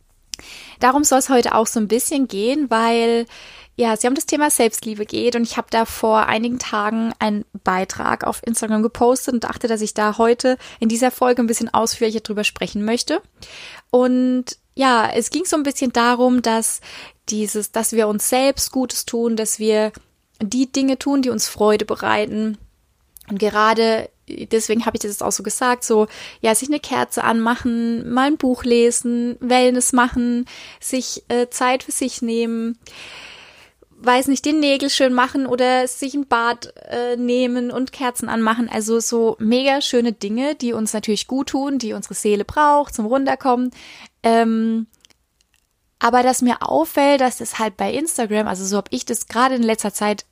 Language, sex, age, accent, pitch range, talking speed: German, female, 20-39, German, 220-255 Hz, 175 wpm